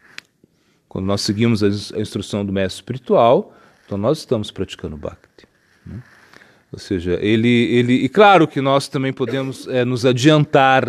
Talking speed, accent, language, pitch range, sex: 150 wpm, Brazilian, Portuguese, 100-130 Hz, male